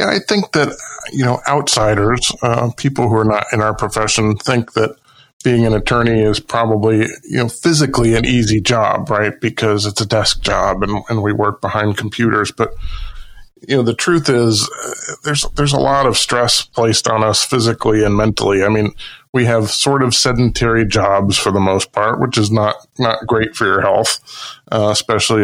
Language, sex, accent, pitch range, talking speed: English, male, American, 105-125 Hz, 190 wpm